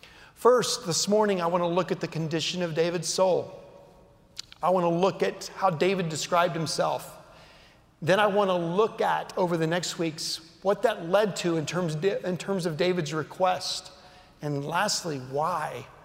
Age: 40-59